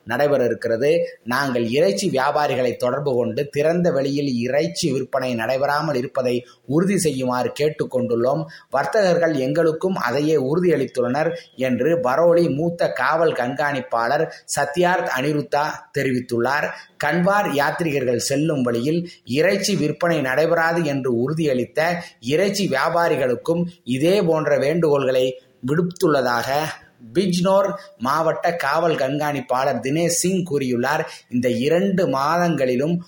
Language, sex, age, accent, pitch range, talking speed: Tamil, male, 30-49, native, 130-170 Hz, 95 wpm